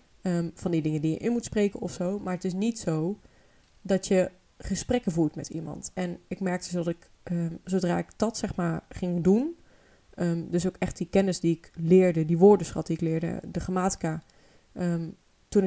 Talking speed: 205 wpm